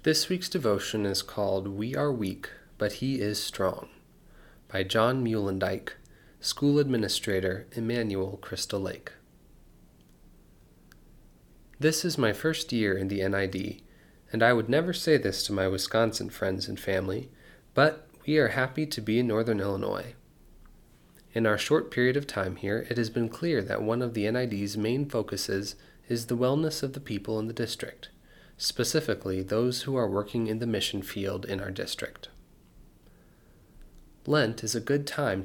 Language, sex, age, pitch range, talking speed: English, male, 30-49, 100-130 Hz, 155 wpm